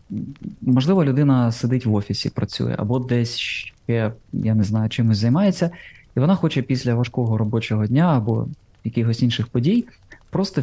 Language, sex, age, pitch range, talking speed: Ukrainian, male, 20-39, 115-140 Hz, 140 wpm